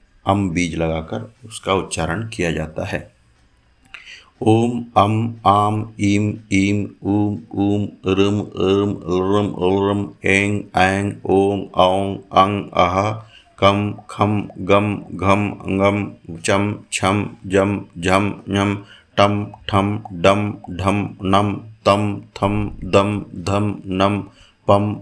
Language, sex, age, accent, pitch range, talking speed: Hindi, male, 50-69, native, 95-105 Hz, 90 wpm